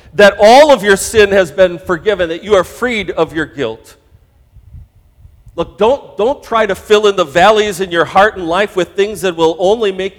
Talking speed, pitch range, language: 205 wpm, 150-215 Hz, English